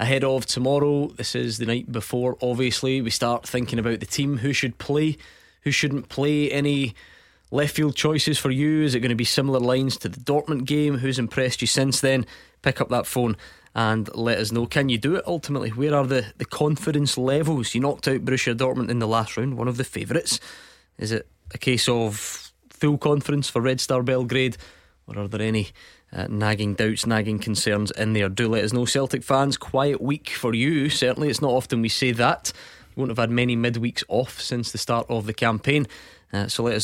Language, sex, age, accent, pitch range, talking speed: English, male, 20-39, British, 115-135 Hz, 210 wpm